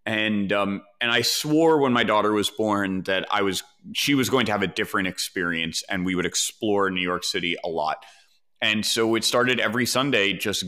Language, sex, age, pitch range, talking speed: English, male, 30-49, 100-120 Hz, 210 wpm